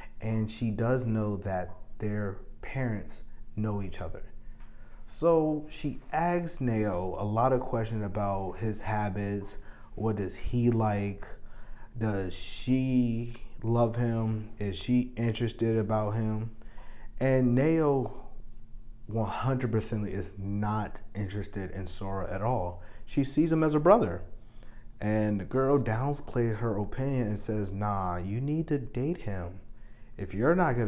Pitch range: 100-120 Hz